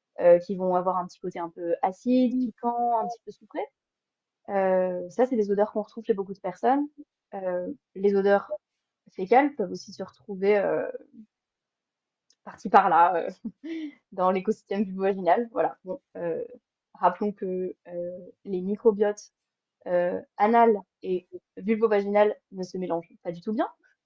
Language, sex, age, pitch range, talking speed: French, female, 20-39, 185-235 Hz, 150 wpm